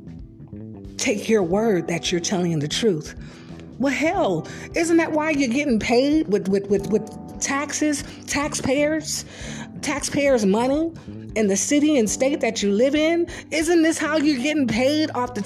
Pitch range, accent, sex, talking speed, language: 220-265 Hz, American, female, 160 wpm, English